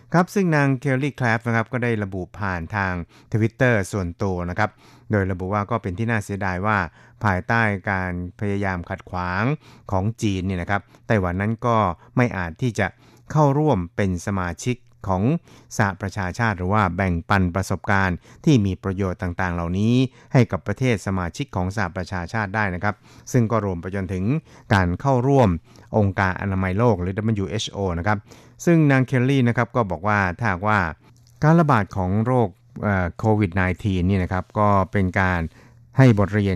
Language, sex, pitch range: Thai, male, 95-120 Hz